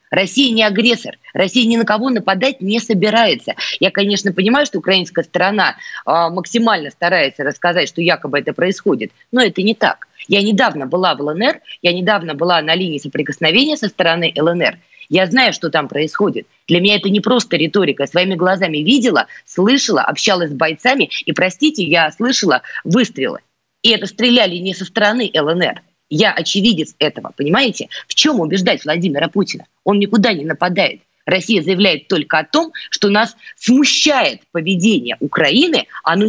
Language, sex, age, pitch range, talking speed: Russian, female, 20-39, 170-225 Hz, 160 wpm